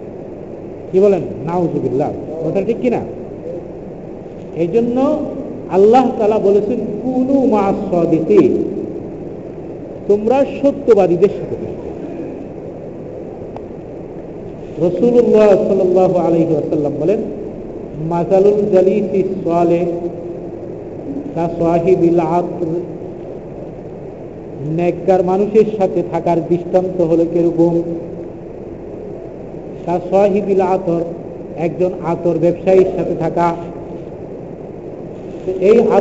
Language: Bengali